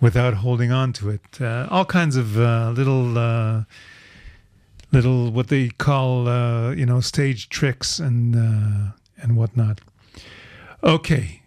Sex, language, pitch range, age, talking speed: male, English, 110-135 Hz, 40-59, 135 wpm